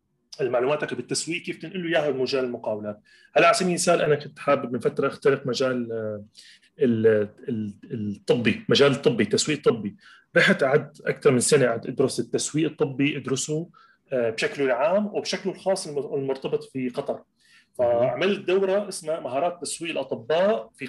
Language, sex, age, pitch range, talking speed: Arabic, male, 30-49, 135-195 Hz, 135 wpm